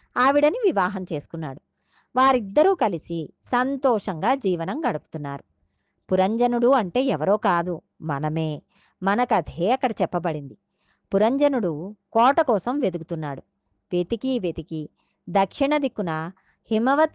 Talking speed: 90 wpm